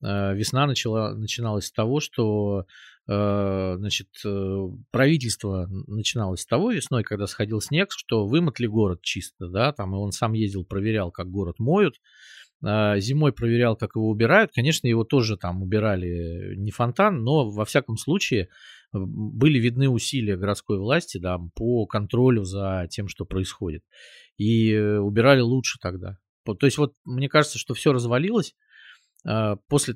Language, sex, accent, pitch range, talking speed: Russian, male, native, 100-125 Hz, 140 wpm